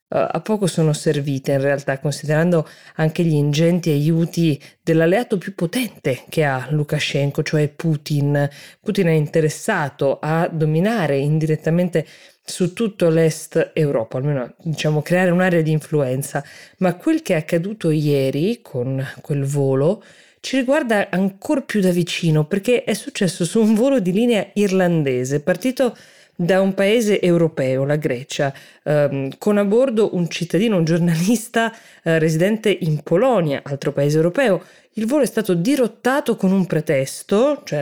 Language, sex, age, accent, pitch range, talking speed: Italian, female, 20-39, native, 155-205 Hz, 145 wpm